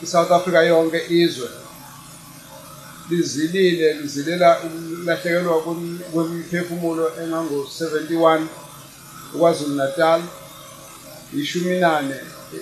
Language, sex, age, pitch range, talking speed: English, male, 50-69, 155-170 Hz, 65 wpm